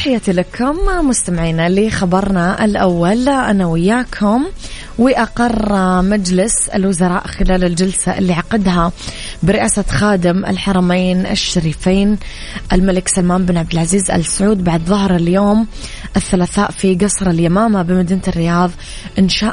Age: 20-39